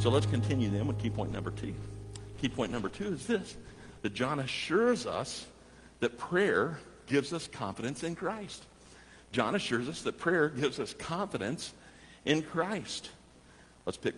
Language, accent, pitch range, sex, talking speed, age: English, American, 95-150 Hz, male, 160 wpm, 60-79